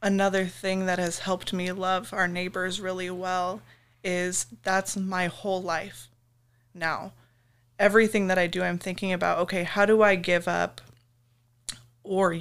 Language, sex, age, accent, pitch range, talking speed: English, female, 20-39, American, 125-185 Hz, 150 wpm